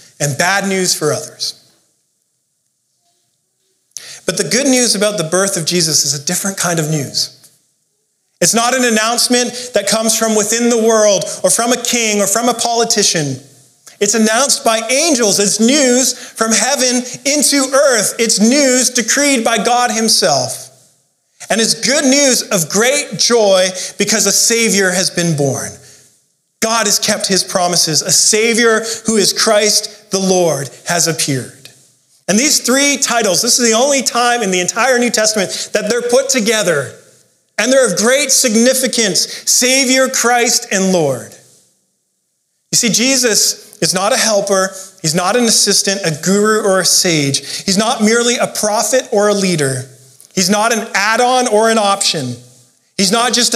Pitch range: 180-235 Hz